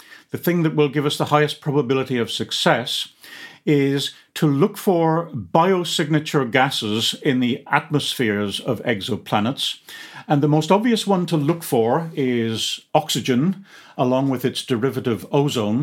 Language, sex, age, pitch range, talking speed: English, male, 50-69, 125-160 Hz, 140 wpm